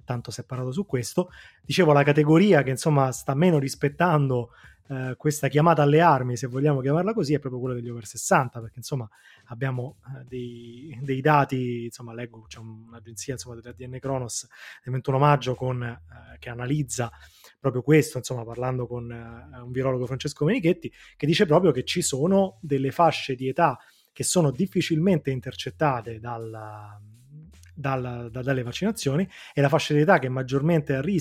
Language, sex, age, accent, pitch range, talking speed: Italian, male, 20-39, native, 125-160 Hz, 165 wpm